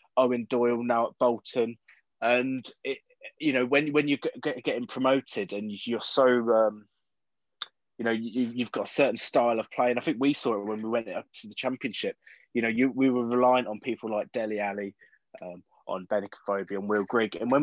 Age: 20-39